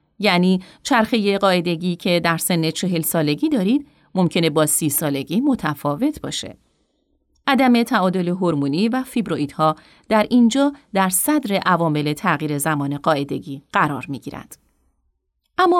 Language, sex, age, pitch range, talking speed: Persian, female, 30-49, 160-245 Hz, 120 wpm